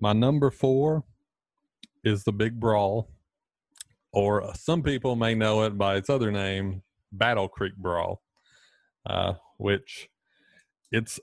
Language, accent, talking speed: English, American, 125 wpm